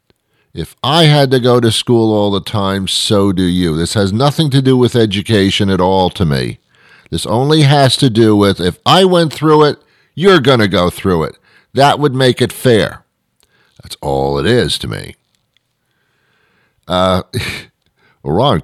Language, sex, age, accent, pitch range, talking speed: English, male, 50-69, American, 90-120 Hz, 175 wpm